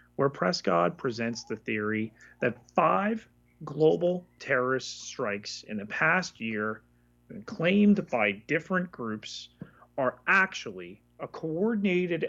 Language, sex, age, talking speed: English, male, 30-49, 105 wpm